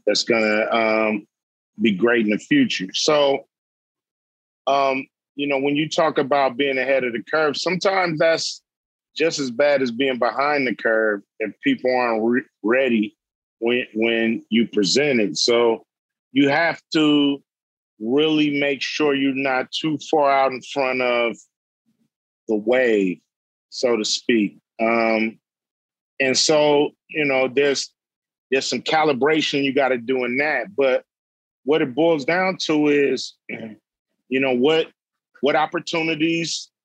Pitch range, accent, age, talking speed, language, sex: 120-145 Hz, American, 40-59, 145 wpm, English, male